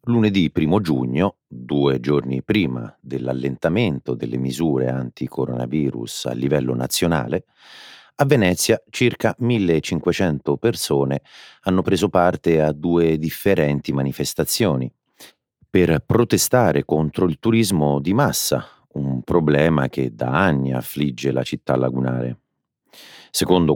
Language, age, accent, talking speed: Italian, 40-59, native, 105 wpm